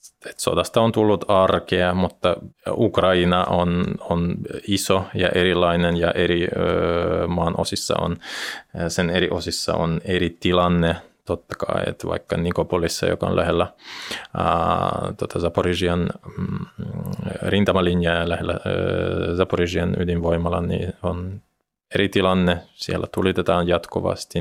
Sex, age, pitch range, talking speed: male, 20-39, 85-90 Hz, 115 wpm